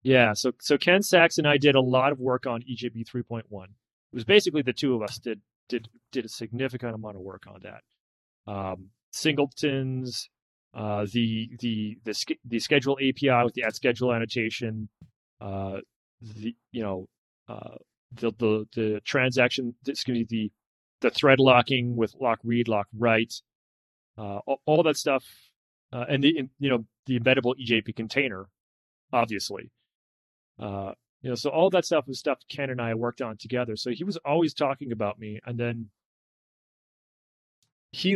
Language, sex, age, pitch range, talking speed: English, male, 30-49, 110-130 Hz, 170 wpm